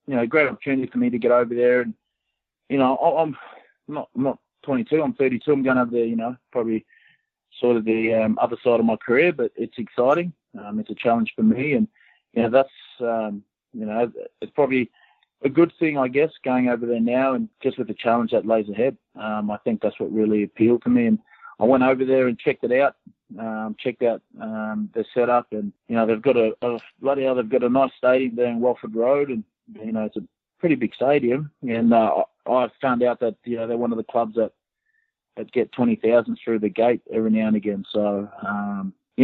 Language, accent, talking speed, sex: English, Australian, 225 wpm, male